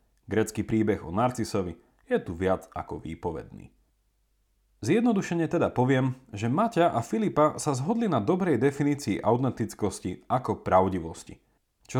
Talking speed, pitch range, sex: 125 wpm, 100-165 Hz, male